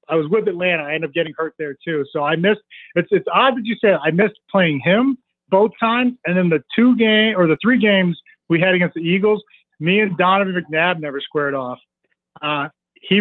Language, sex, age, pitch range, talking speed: English, male, 40-59, 155-200 Hz, 230 wpm